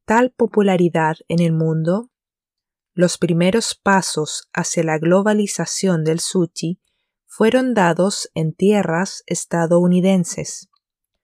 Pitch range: 170-205 Hz